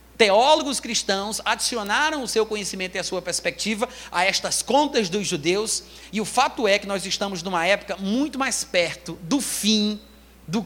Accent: Brazilian